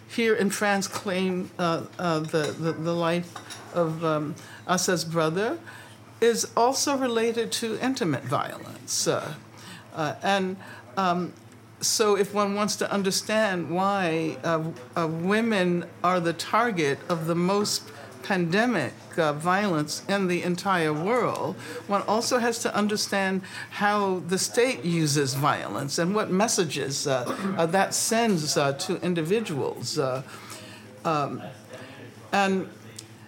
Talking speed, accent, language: 125 wpm, American, French